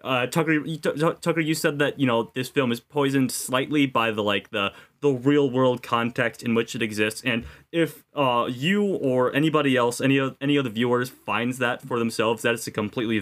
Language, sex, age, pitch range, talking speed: English, male, 20-39, 110-140 Hz, 210 wpm